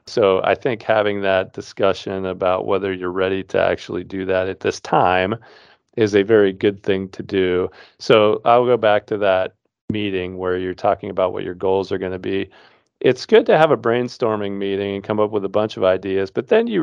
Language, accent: English, American